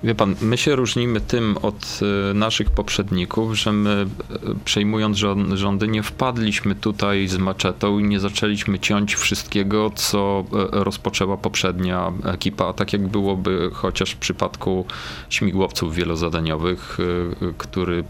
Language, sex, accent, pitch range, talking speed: Polish, male, native, 90-110 Hz, 120 wpm